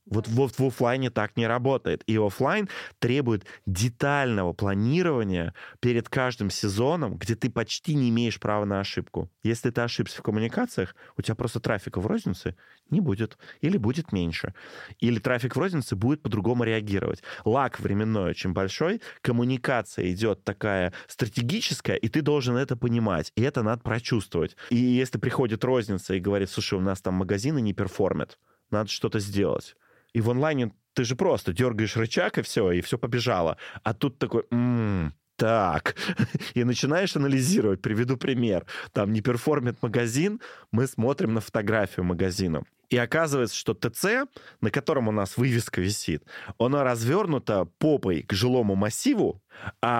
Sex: male